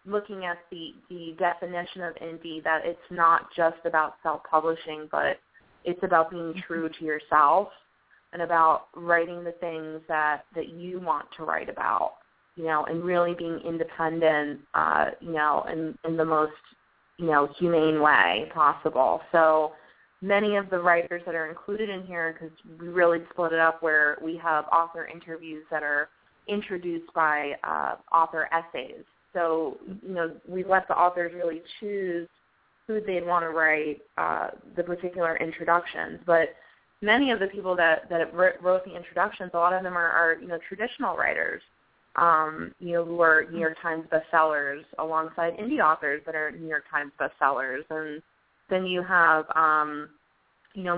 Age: 20-39